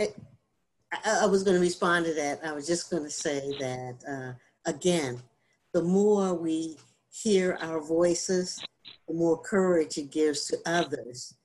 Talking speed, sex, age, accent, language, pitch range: 155 wpm, female, 50-69, American, English, 160-195 Hz